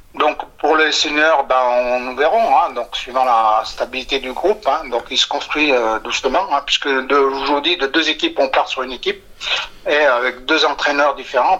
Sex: male